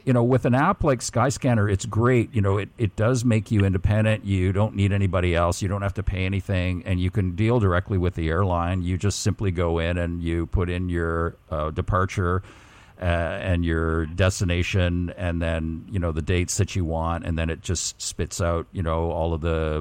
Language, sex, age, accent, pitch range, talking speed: English, male, 50-69, American, 85-110 Hz, 220 wpm